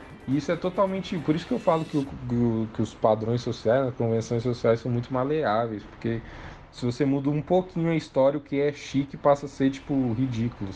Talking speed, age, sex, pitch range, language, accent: 205 wpm, 20-39, male, 110-145 Hz, Portuguese, Brazilian